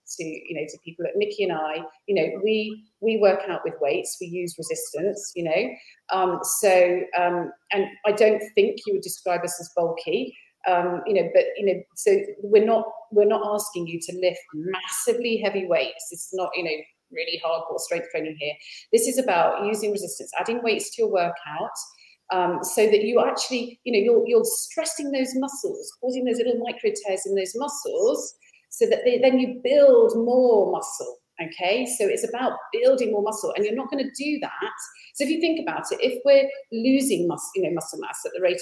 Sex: female